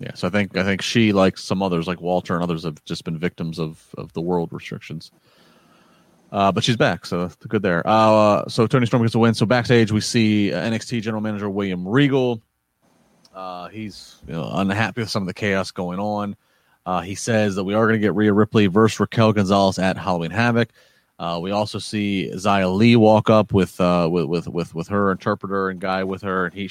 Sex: male